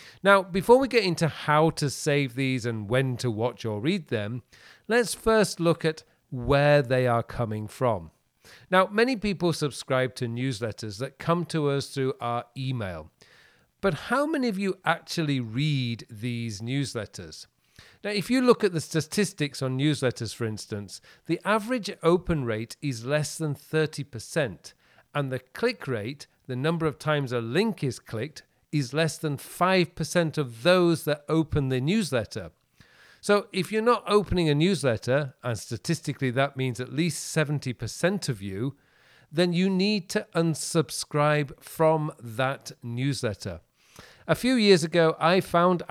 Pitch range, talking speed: 125-175 Hz, 155 wpm